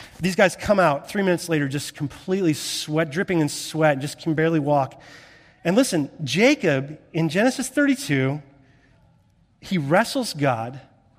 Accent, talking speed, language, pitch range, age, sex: American, 145 wpm, English, 140-190 Hz, 30-49, male